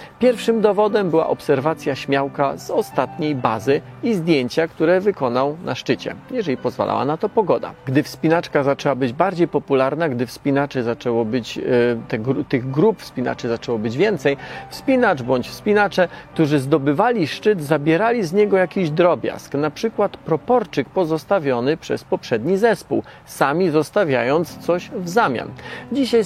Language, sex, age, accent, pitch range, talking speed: Polish, male, 40-59, native, 140-175 Hz, 135 wpm